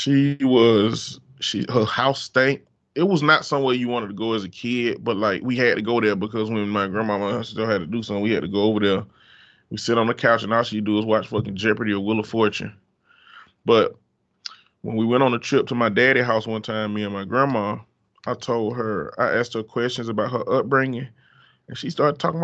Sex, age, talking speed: male, 20-39, 240 wpm